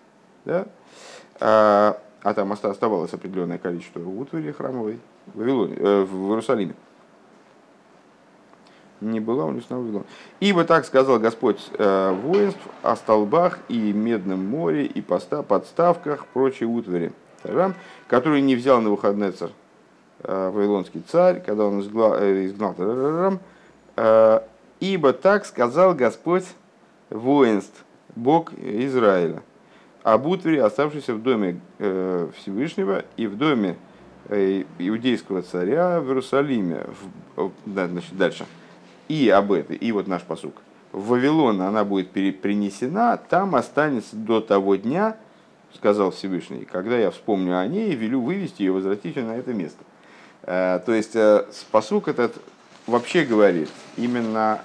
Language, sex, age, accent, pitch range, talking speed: Russian, male, 50-69, native, 95-135 Hz, 125 wpm